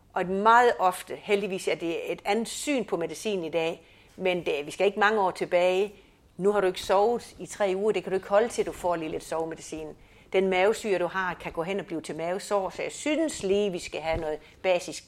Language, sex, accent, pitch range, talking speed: Danish, female, native, 180-240 Hz, 245 wpm